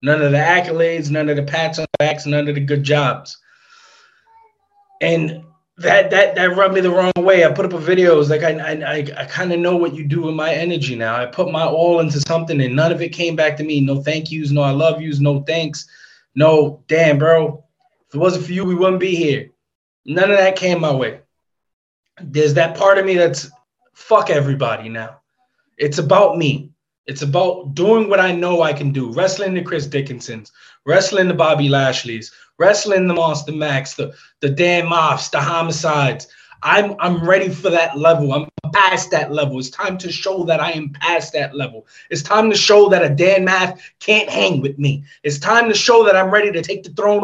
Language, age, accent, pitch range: English, 20-39, American, 150-215 Hz